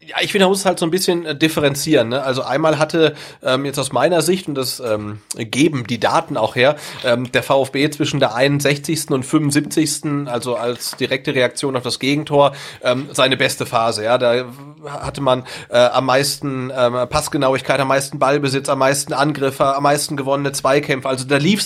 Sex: male